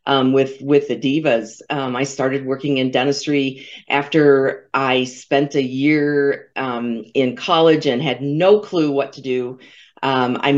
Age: 50-69